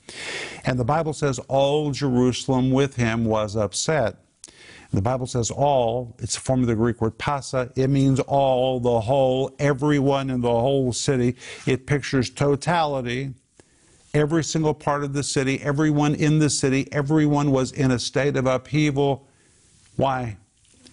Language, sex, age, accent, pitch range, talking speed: English, male, 50-69, American, 115-140 Hz, 150 wpm